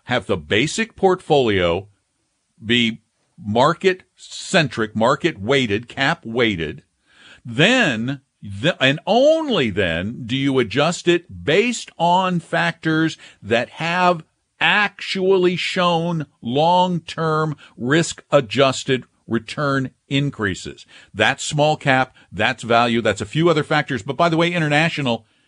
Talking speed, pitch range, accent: 100 wpm, 110-160 Hz, American